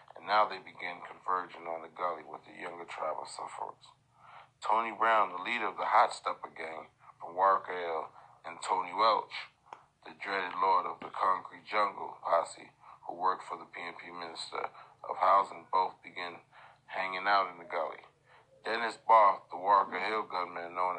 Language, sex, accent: English, male, American